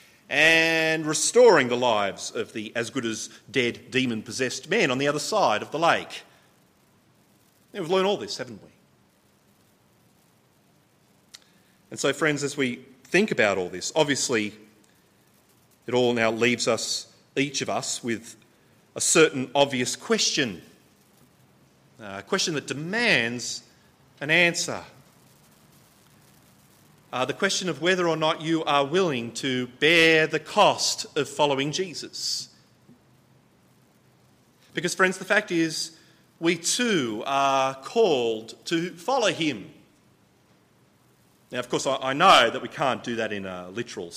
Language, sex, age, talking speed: English, male, 30-49, 135 wpm